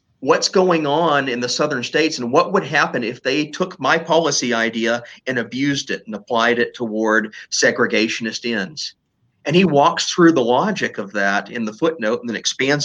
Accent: American